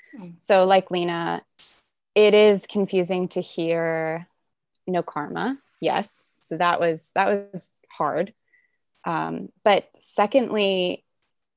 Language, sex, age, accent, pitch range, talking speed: English, female, 20-39, American, 165-200 Hz, 105 wpm